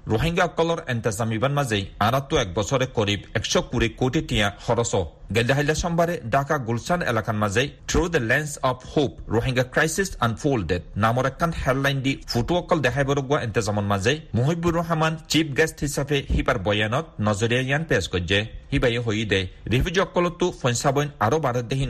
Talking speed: 50 wpm